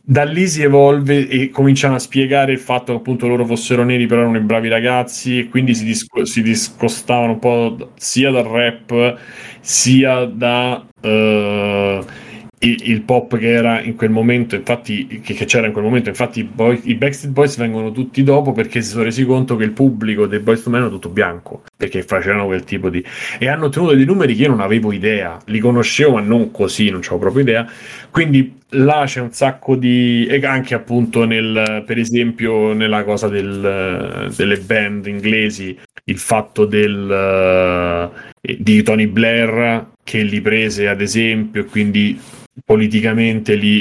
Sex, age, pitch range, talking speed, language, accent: male, 30-49, 105-125 Hz, 175 wpm, Italian, native